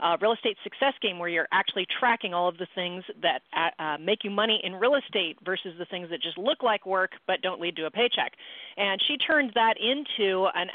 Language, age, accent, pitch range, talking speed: English, 40-59, American, 180-230 Hz, 230 wpm